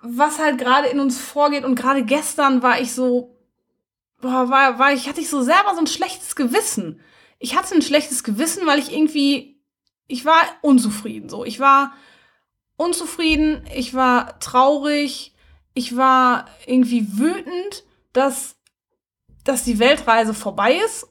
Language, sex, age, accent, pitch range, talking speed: German, female, 20-39, German, 245-305 Hz, 150 wpm